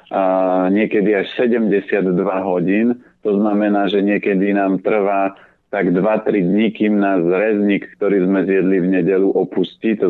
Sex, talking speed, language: male, 145 wpm, Slovak